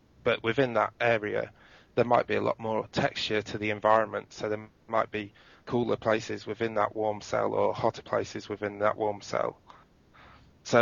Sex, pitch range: male, 105-115 Hz